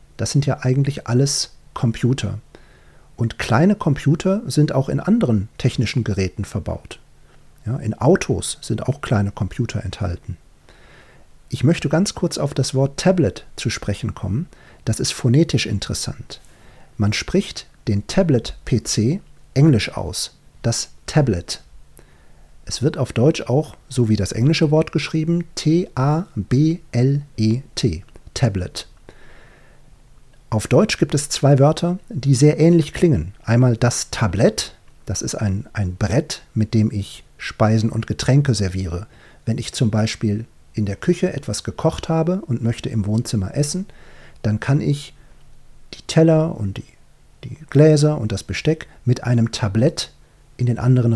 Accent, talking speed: German, 135 wpm